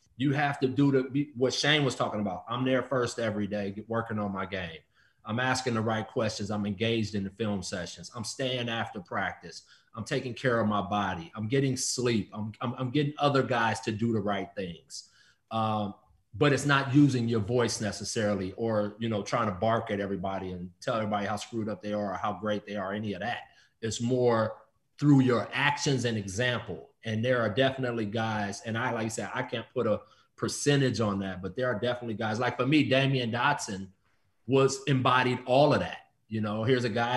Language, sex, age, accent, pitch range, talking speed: English, male, 30-49, American, 105-130 Hz, 210 wpm